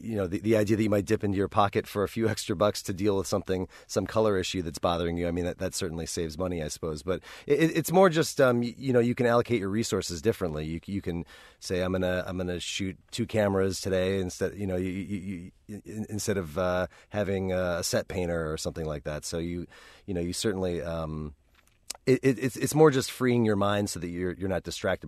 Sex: male